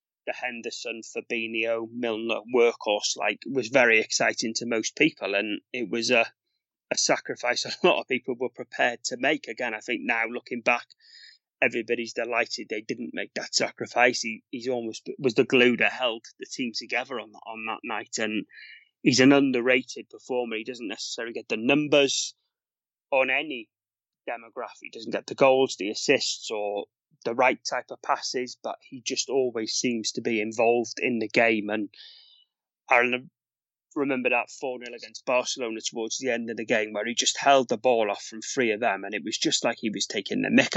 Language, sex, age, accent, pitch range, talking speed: English, male, 30-49, British, 110-130 Hz, 185 wpm